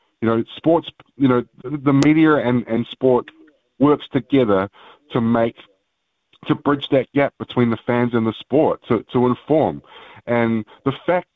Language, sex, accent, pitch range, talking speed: English, male, Australian, 110-130 Hz, 160 wpm